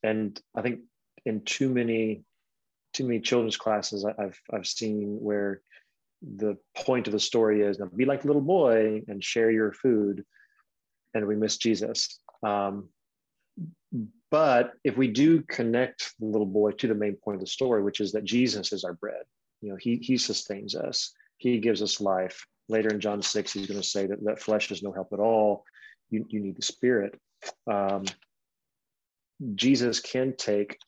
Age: 30-49